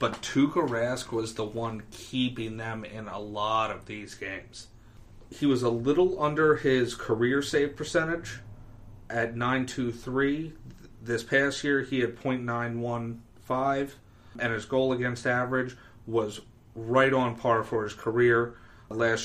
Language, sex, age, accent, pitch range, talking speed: English, male, 40-59, American, 115-130 Hz, 145 wpm